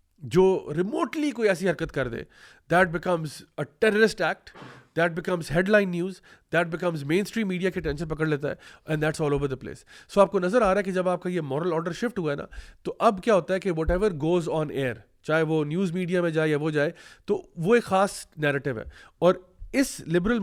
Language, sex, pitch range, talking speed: Urdu, male, 155-195 Hz, 230 wpm